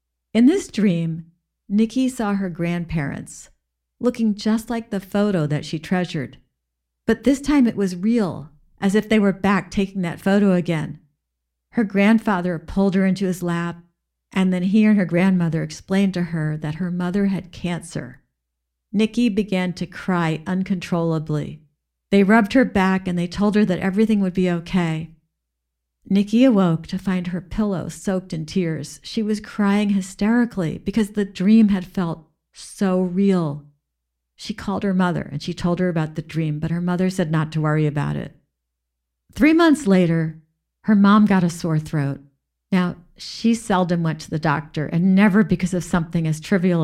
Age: 50-69